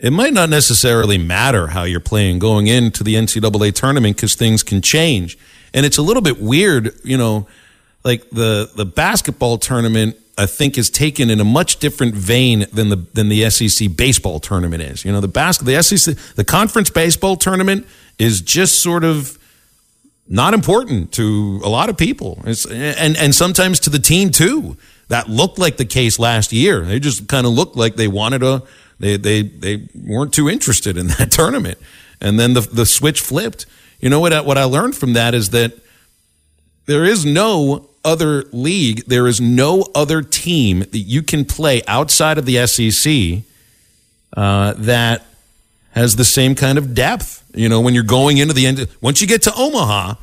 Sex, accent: male, American